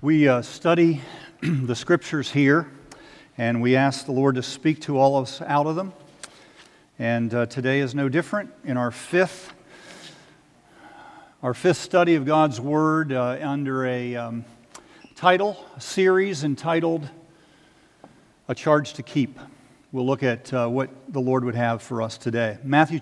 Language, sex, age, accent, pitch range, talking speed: English, male, 50-69, American, 130-170 Hz, 155 wpm